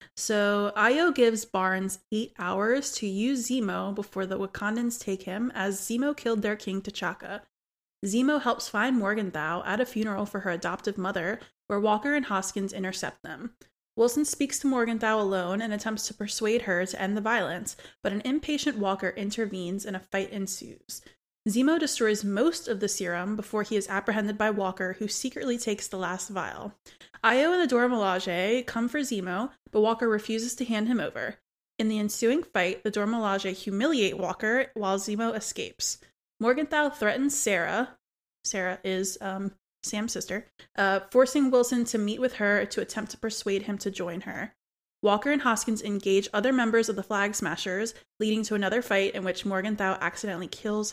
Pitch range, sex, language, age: 195-235 Hz, female, English, 20-39